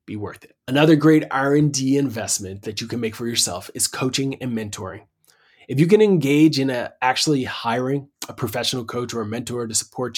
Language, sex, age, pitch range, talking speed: English, male, 20-39, 115-145 Hz, 195 wpm